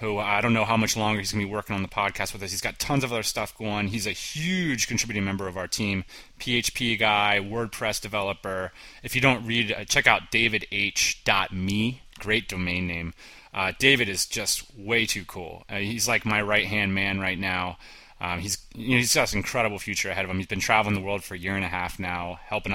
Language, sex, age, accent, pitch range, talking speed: English, male, 30-49, American, 100-120 Hz, 225 wpm